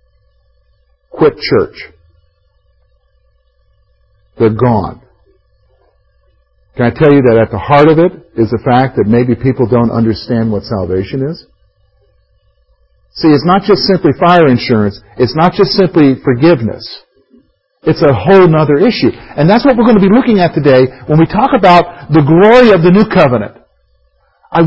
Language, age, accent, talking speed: English, 50-69, American, 150 wpm